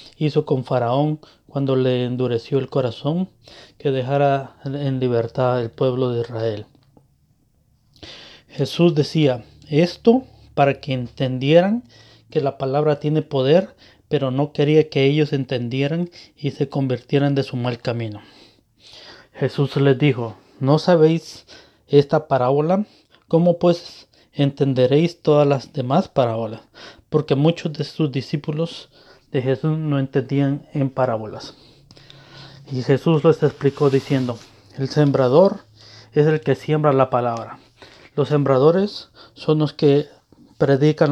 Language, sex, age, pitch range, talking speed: Spanish, male, 30-49, 125-150 Hz, 125 wpm